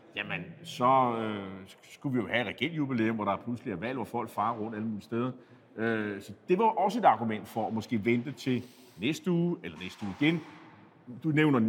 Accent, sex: native, male